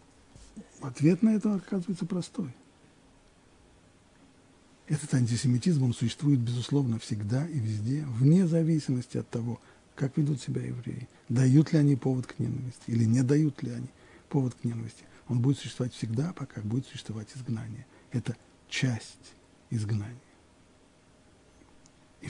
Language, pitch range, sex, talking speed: Russian, 115-155 Hz, male, 125 wpm